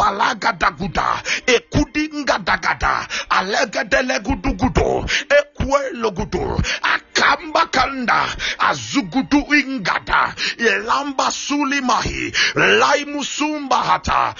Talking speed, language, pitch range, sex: 65 wpm, English, 260-290 Hz, male